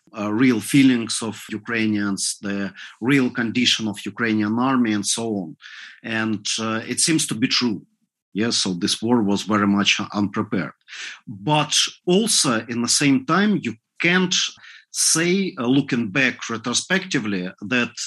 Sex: male